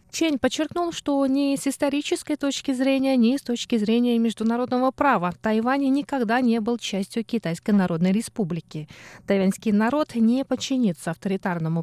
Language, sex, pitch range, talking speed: Russian, female, 190-260 Hz, 135 wpm